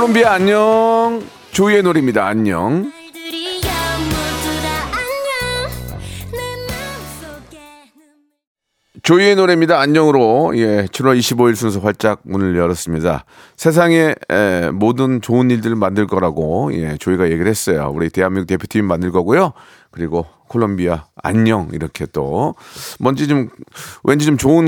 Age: 40-59